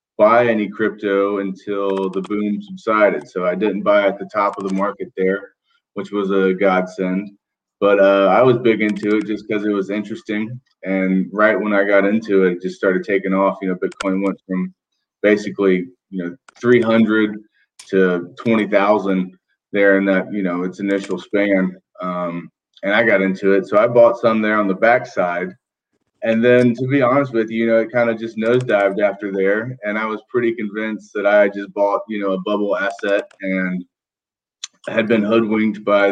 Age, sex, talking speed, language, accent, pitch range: 30-49, male, 190 wpm, English, American, 95-110 Hz